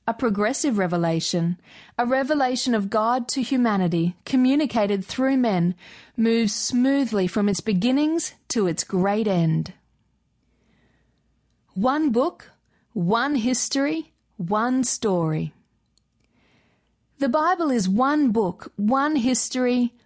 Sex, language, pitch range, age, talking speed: female, English, 200-260 Hz, 40-59, 100 wpm